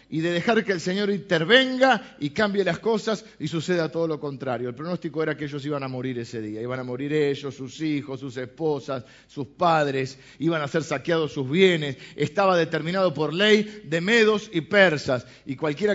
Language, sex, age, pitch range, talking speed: Spanish, male, 50-69, 145-185 Hz, 195 wpm